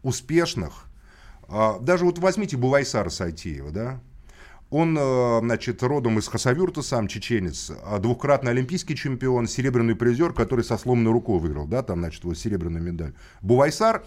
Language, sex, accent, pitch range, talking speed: Russian, male, native, 105-140 Hz, 130 wpm